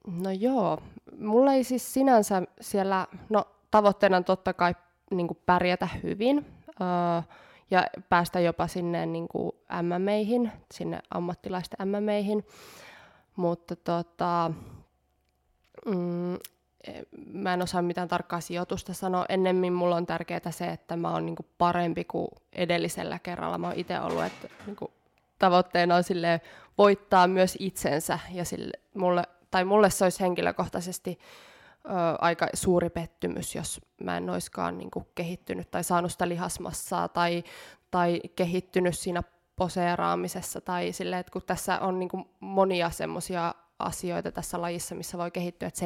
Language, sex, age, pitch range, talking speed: Finnish, female, 20-39, 170-185 Hz, 140 wpm